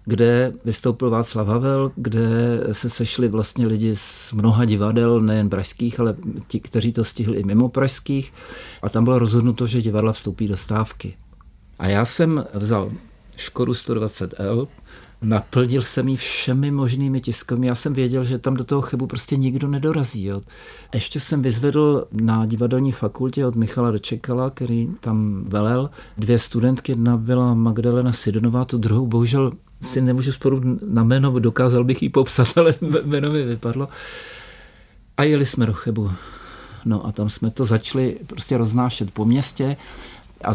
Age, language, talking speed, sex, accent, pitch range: 60-79, Czech, 155 wpm, male, native, 110-135 Hz